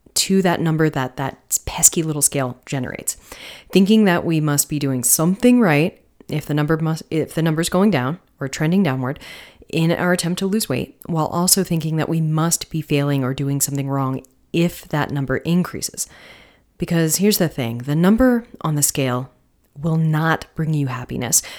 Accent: American